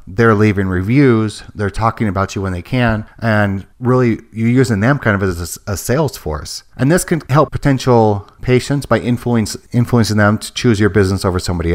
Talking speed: 195 wpm